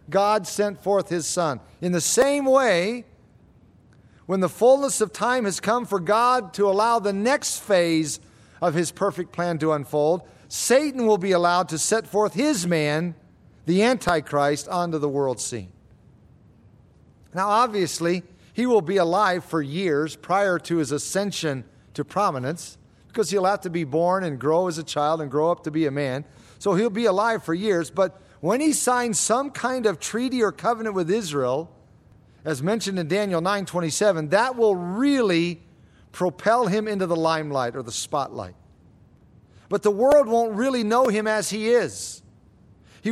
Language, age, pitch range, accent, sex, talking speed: English, 50-69, 155-220 Hz, American, male, 170 wpm